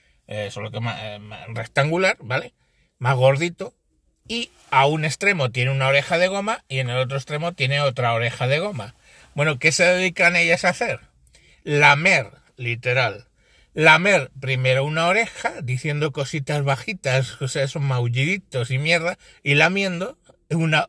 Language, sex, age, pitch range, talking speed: Spanish, male, 60-79, 130-170 Hz, 155 wpm